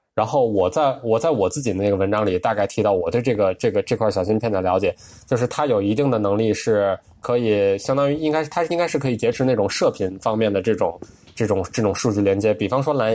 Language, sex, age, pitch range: Chinese, male, 20-39, 105-130 Hz